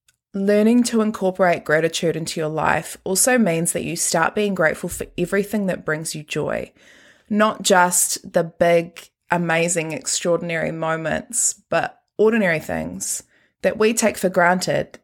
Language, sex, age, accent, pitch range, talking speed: English, female, 20-39, Australian, 170-210 Hz, 140 wpm